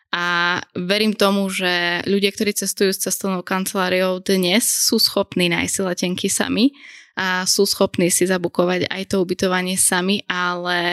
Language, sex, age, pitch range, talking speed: Slovak, female, 20-39, 175-195 Hz, 145 wpm